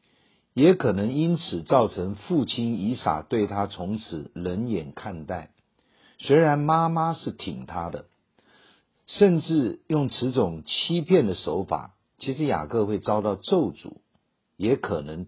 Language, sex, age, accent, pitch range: Chinese, male, 50-69, native, 95-140 Hz